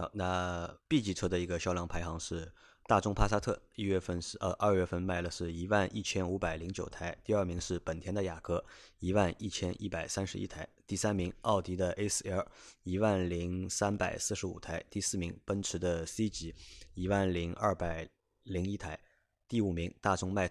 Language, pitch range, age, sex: Chinese, 85-100 Hz, 20-39, male